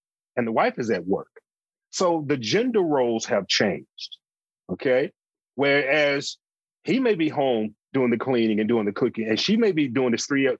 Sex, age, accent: male, 30-49, American